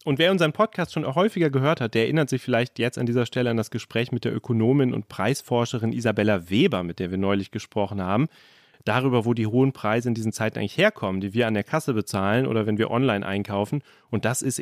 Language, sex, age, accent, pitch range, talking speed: German, male, 30-49, German, 105-135 Hz, 230 wpm